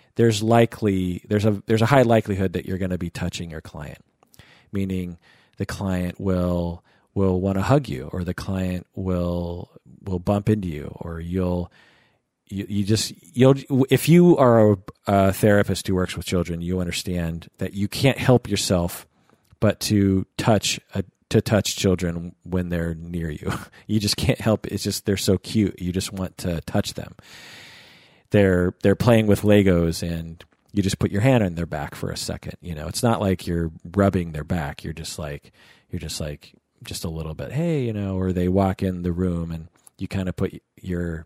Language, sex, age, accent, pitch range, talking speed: English, male, 40-59, American, 85-105 Hz, 195 wpm